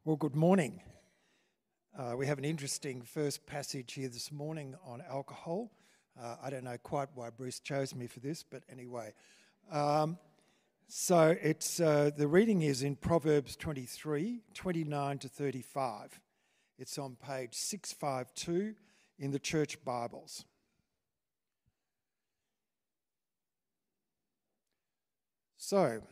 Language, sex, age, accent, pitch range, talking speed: English, male, 50-69, Australian, 135-180 Hz, 115 wpm